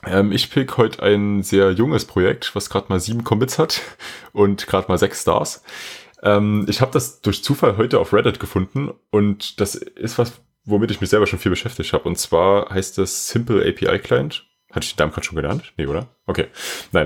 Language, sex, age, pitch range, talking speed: German, male, 20-39, 85-105 Hz, 210 wpm